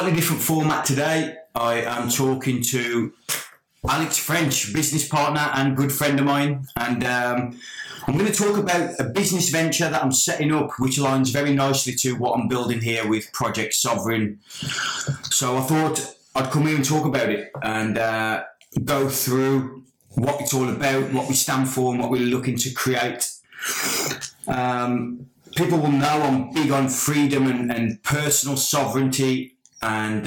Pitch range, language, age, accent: 120-145 Hz, English, 20-39, British